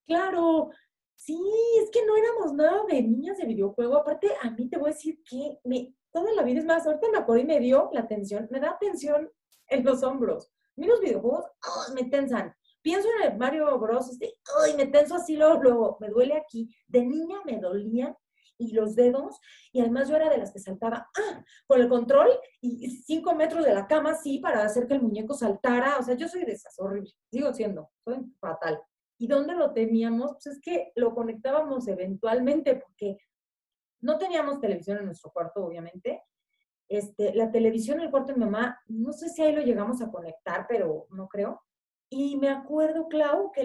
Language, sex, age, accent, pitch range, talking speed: Spanish, female, 30-49, Mexican, 215-300 Hz, 200 wpm